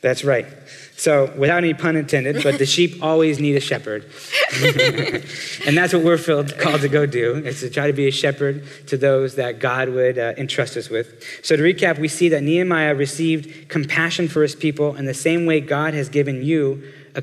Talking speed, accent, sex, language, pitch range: 205 wpm, American, male, English, 140-160 Hz